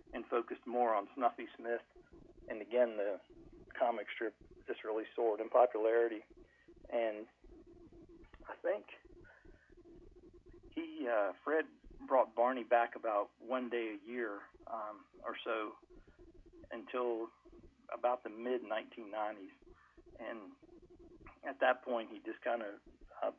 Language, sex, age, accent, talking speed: English, male, 40-59, American, 120 wpm